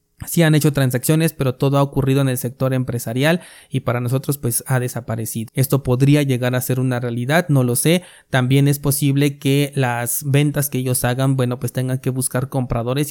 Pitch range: 130-145 Hz